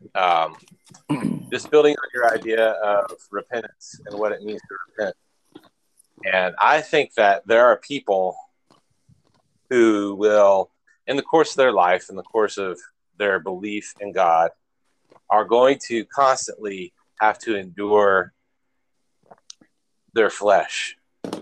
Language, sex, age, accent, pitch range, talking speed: English, male, 30-49, American, 110-155 Hz, 130 wpm